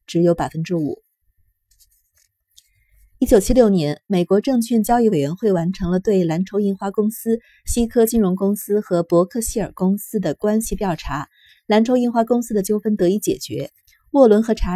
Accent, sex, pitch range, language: native, female, 160-215 Hz, Chinese